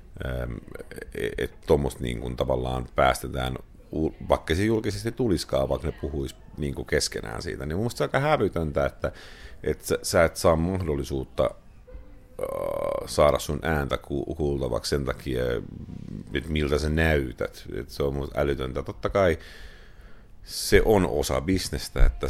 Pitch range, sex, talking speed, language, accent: 65-80 Hz, male, 130 wpm, Finnish, native